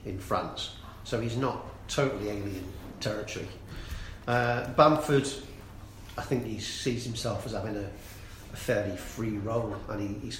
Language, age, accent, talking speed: English, 40-59, British, 140 wpm